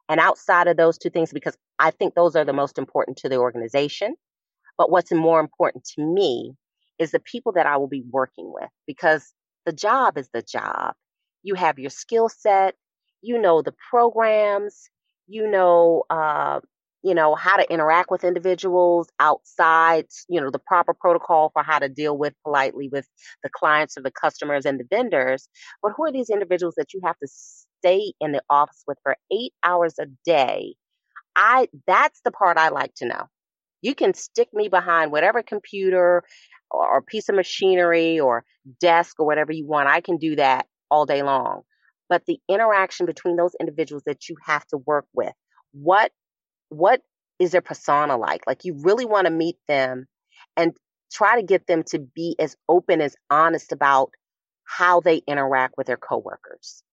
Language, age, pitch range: English, 30-49, 145-185 Hz